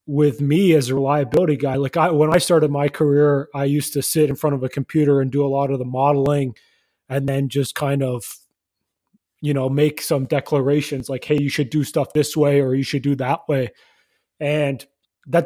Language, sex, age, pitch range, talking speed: English, male, 20-39, 135-155 Hz, 215 wpm